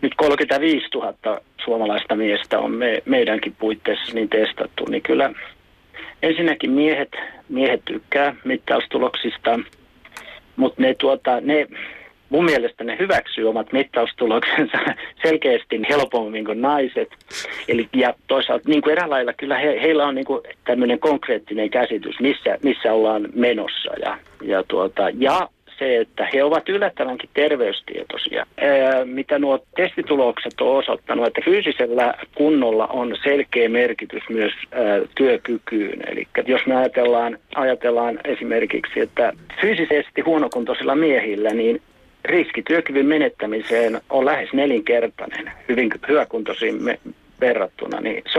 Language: Finnish